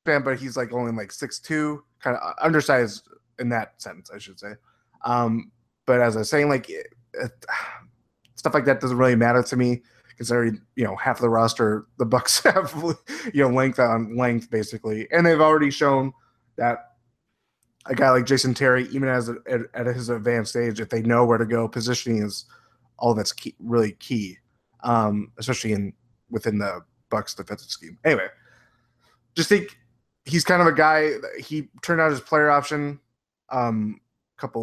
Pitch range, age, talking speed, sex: 115-135 Hz, 20-39, 185 wpm, male